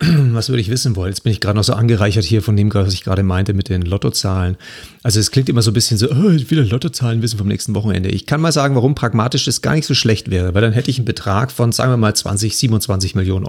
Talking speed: 275 wpm